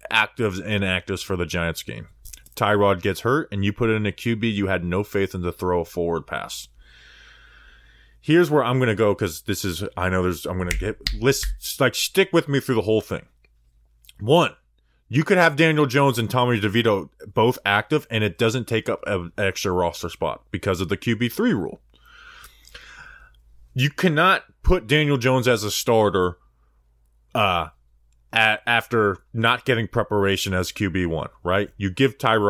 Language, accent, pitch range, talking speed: English, American, 90-130 Hz, 175 wpm